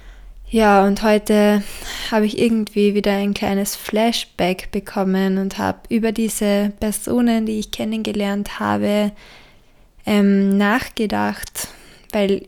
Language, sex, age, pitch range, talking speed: German, female, 20-39, 200-230 Hz, 105 wpm